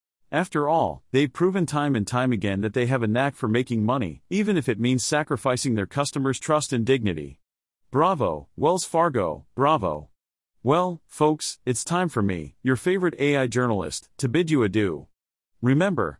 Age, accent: 40-59, American